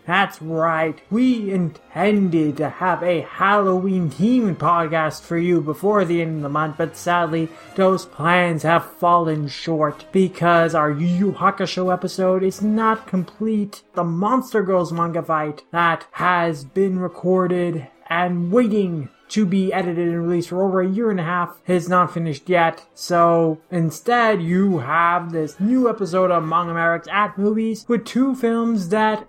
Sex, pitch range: male, 160-190 Hz